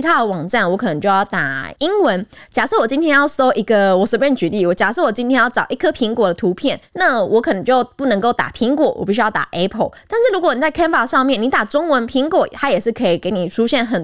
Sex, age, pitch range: female, 20-39, 195-275 Hz